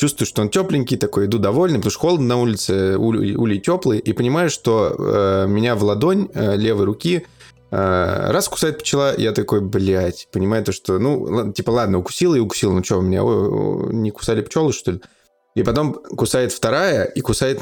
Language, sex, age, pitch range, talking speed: Russian, male, 20-39, 95-125 Hz, 195 wpm